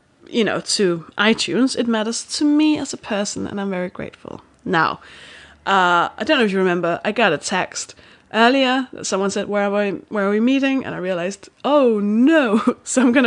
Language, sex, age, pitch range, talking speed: English, female, 20-39, 180-240 Hz, 210 wpm